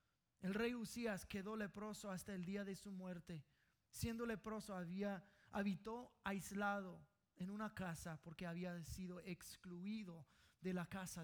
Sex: male